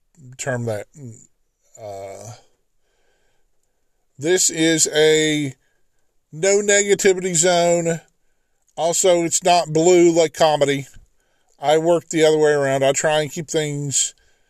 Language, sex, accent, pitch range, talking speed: English, male, American, 125-155 Hz, 110 wpm